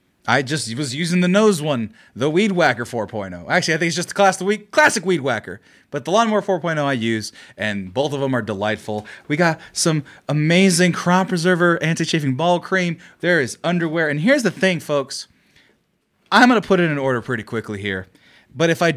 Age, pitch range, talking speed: 30-49, 125-190 Hz, 215 wpm